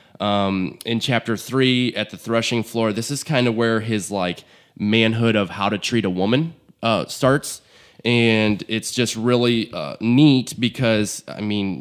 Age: 20-39